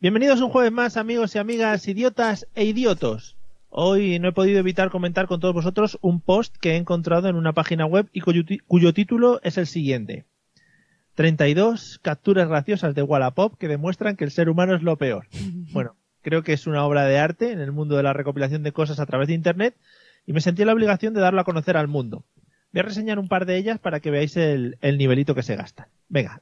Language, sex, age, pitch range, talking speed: Spanish, male, 30-49, 140-185 Hz, 220 wpm